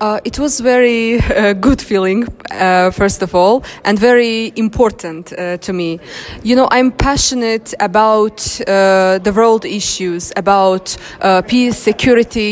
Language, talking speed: English, 145 wpm